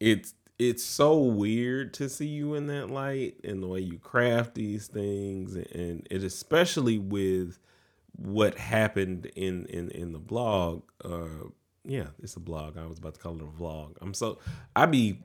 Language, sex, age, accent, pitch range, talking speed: English, male, 20-39, American, 90-120 Hz, 180 wpm